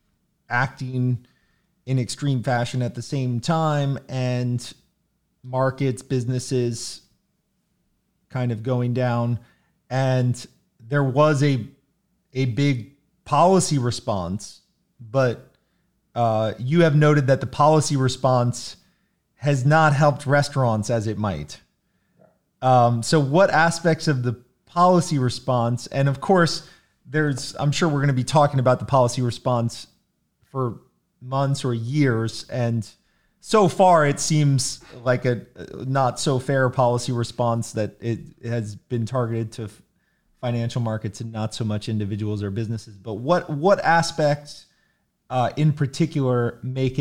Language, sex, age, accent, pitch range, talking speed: English, male, 30-49, American, 115-145 Hz, 130 wpm